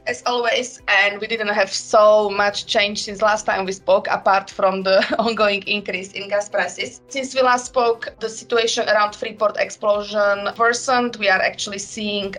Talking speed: 175 wpm